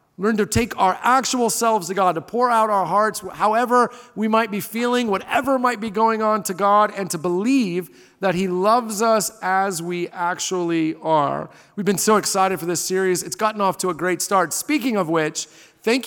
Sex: male